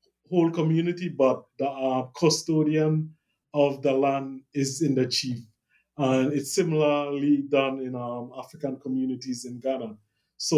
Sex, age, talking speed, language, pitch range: male, 20-39, 135 wpm, English, 125-145 Hz